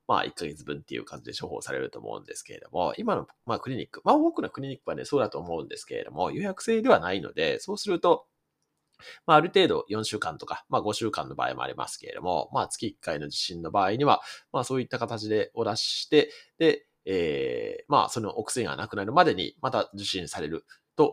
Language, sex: Japanese, male